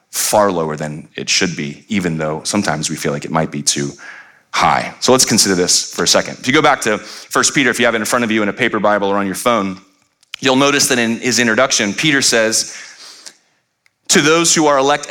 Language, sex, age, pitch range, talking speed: English, male, 30-49, 100-170 Hz, 240 wpm